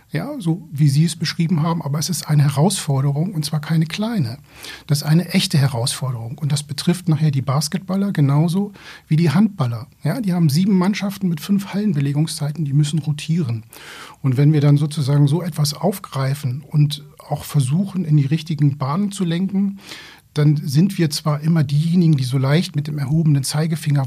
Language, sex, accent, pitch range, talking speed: German, male, German, 145-180 Hz, 180 wpm